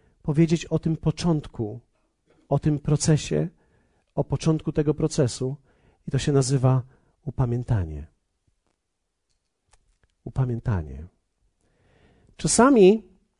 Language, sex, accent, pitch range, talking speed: Polish, male, native, 145-220 Hz, 80 wpm